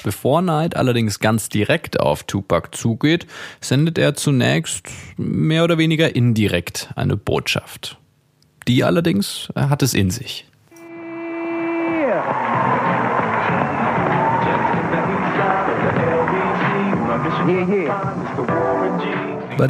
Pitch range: 115-195 Hz